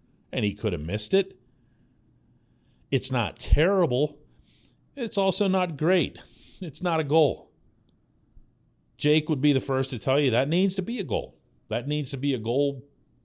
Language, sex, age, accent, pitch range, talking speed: English, male, 40-59, American, 105-150 Hz, 170 wpm